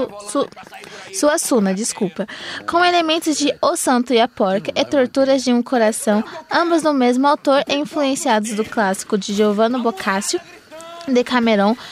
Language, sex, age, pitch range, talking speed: Portuguese, female, 20-39, 230-290 Hz, 145 wpm